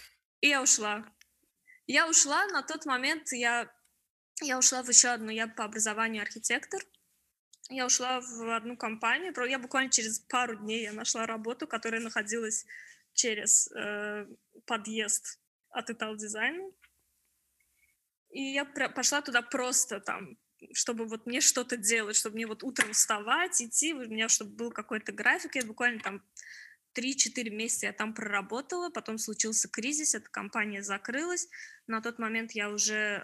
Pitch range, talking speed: 220-275 Hz, 150 wpm